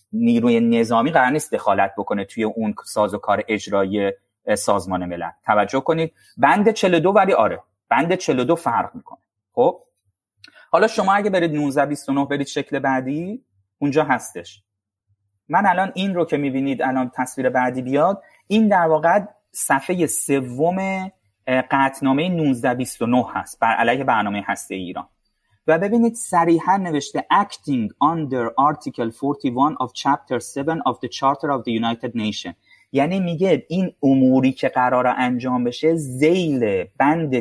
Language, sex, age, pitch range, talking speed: Persian, male, 30-49, 120-180 Hz, 135 wpm